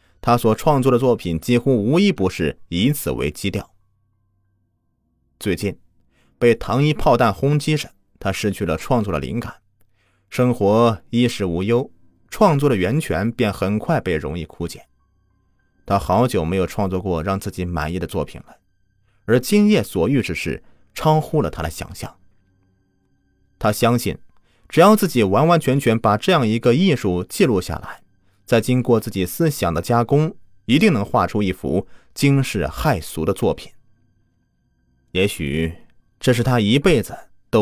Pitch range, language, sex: 90-125 Hz, Chinese, male